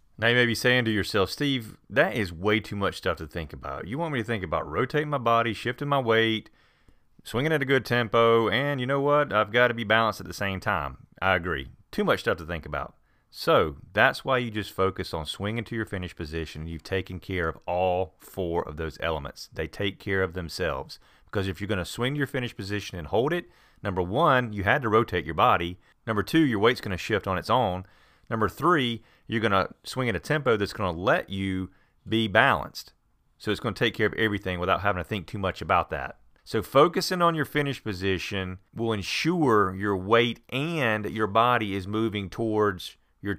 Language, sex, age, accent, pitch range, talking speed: English, male, 30-49, American, 95-115 Hz, 225 wpm